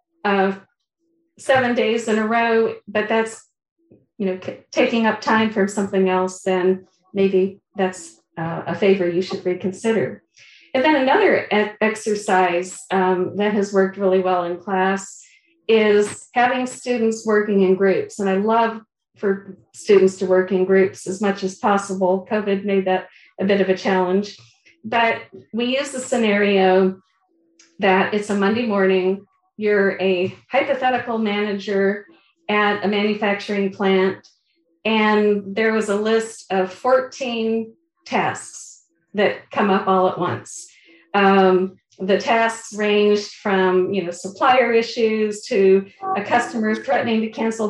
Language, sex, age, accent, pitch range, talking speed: English, female, 50-69, American, 190-225 Hz, 135 wpm